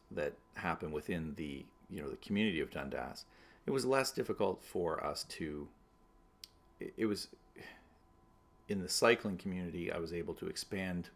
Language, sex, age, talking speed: English, male, 40-59, 150 wpm